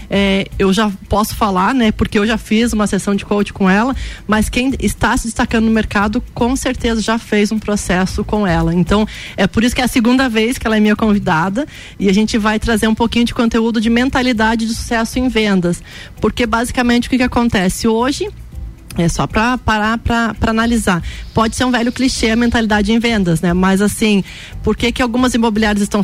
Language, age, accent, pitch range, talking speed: Portuguese, 20-39, Brazilian, 205-235 Hz, 210 wpm